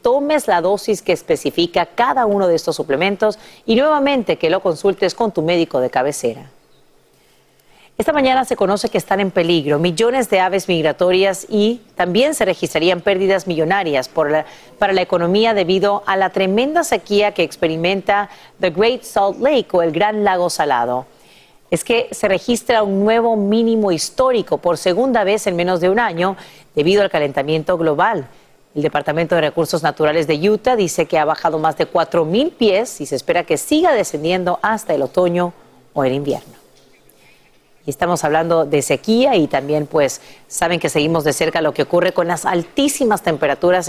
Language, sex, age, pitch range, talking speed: Spanish, female, 40-59, 165-215 Hz, 170 wpm